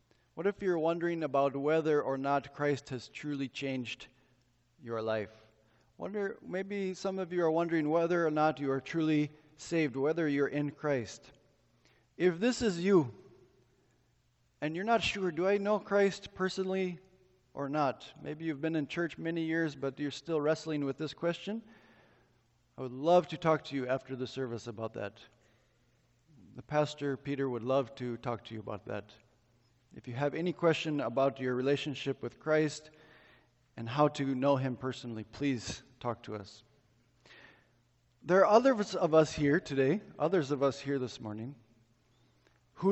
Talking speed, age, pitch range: 165 wpm, 40-59, 125-160 Hz